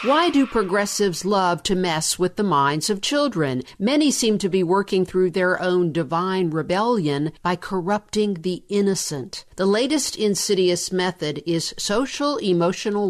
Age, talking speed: 50-69, 145 wpm